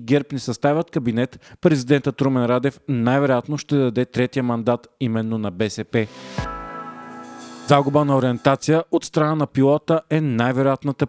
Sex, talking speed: male, 125 wpm